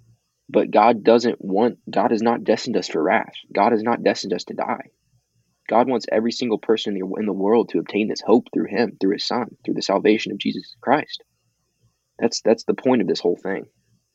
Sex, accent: male, American